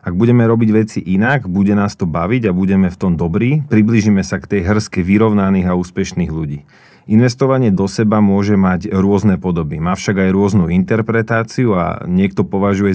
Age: 30-49